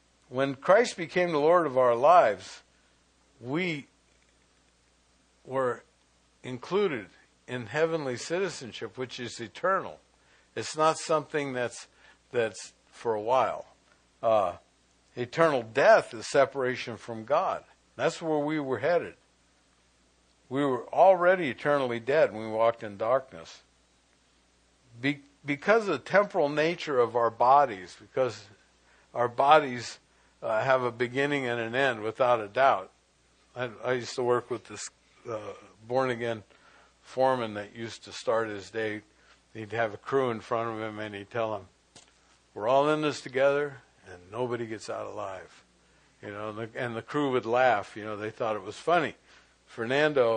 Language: English